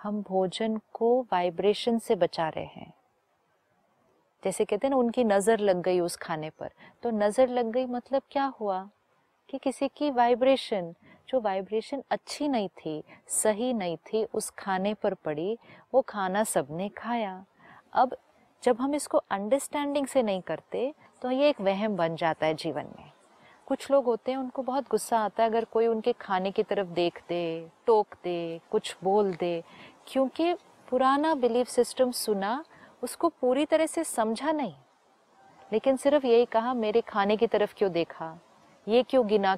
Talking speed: 165 wpm